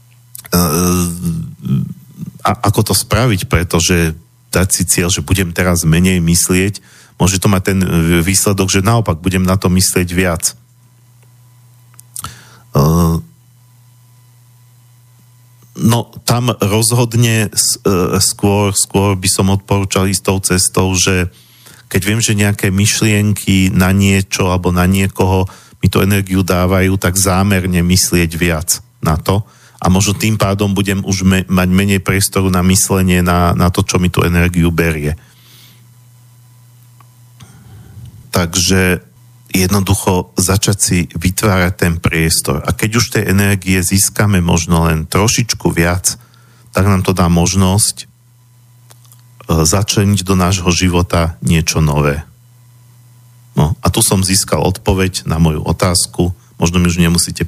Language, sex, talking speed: Slovak, male, 120 wpm